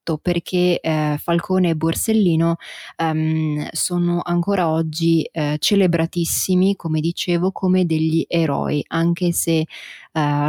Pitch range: 155-180 Hz